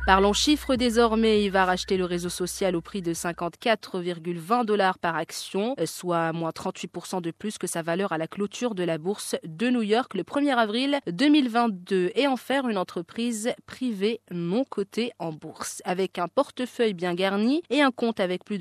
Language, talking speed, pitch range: French, 185 wpm, 170-235 Hz